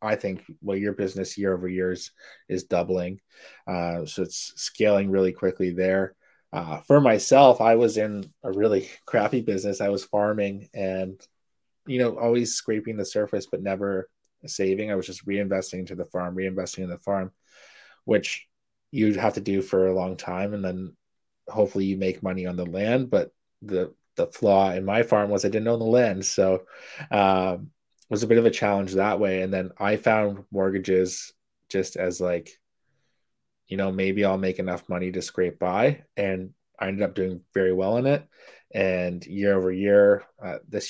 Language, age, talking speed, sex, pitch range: English, 20-39, 185 wpm, male, 95-100 Hz